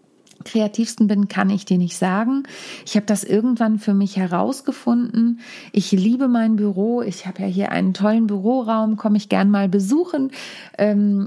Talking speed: 165 wpm